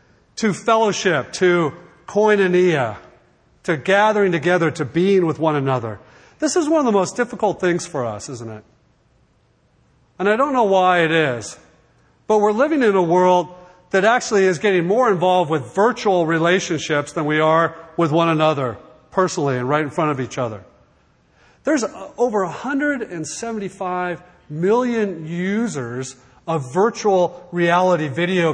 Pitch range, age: 150-205 Hz, 40-59